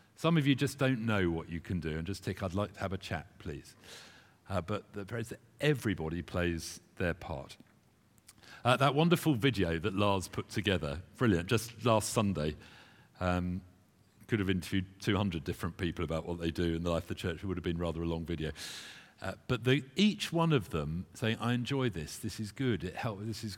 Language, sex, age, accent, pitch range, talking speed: English, male, 50-69, British, 90-110 Hz, 210 wpm